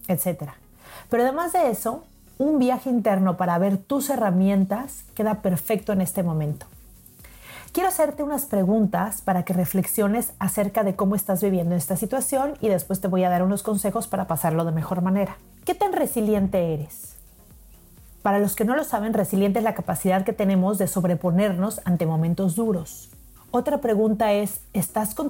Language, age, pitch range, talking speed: Spanish, 40-59, 185-220 Hz, 165 wpm